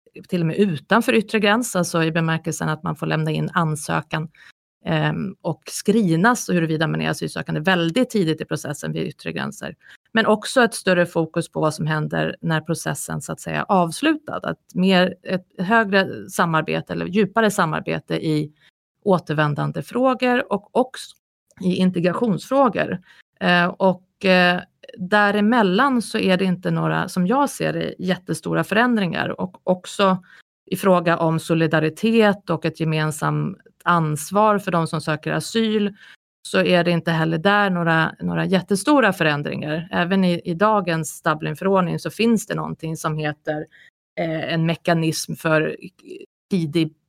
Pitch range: 155-205 Hz